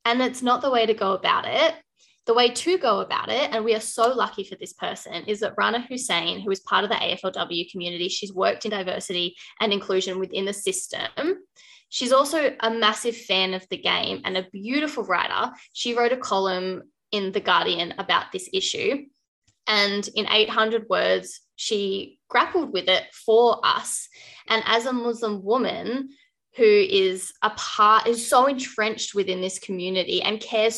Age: 10-29